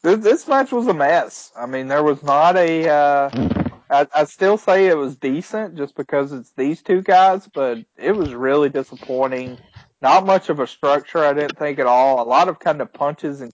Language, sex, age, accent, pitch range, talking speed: English, male, 30-49, American, 125-145 Hz, 210 wpm